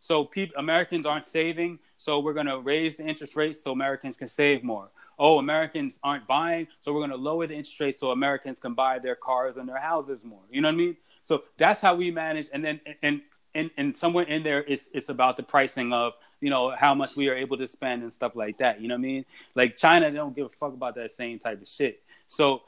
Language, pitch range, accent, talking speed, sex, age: English, 135-165 Hz, American, 255 wpm, male, 20-39